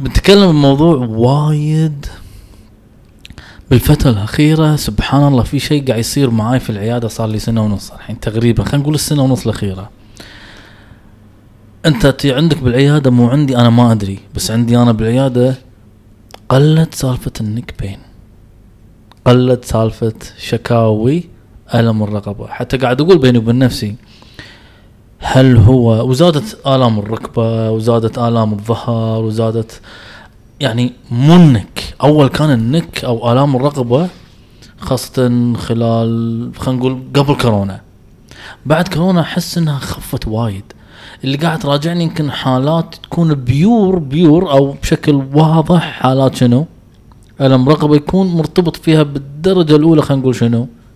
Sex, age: male, 20-39